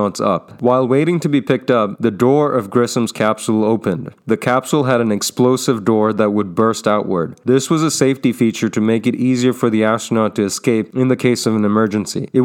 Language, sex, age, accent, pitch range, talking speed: English, male, 30-49, American, 110-130 Hz, 210 wpm